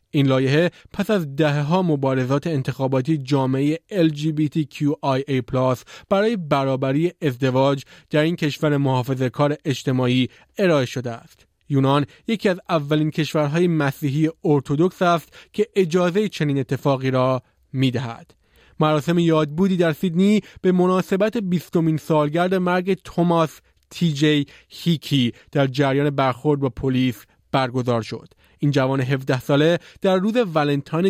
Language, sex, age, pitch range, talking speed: Persian, male, 30-49, 135-170 Hz, 125 wpm